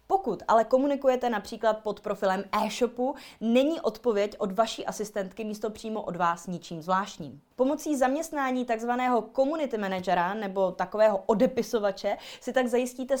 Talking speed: 130 wpm